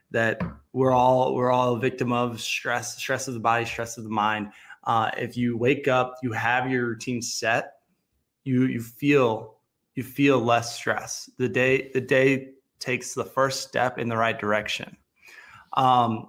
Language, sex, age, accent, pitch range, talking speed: English, male, 20-39, American, 115-135 Hz, 175 wpm